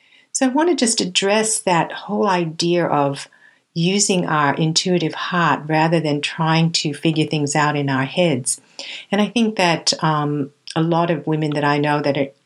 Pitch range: 140-170 Hz